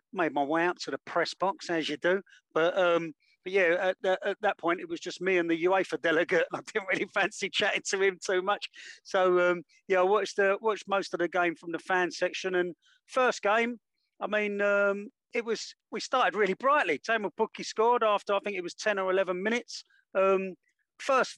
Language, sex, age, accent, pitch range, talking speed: English, male, 40-59, British, 170-210 Hz, 220 wpm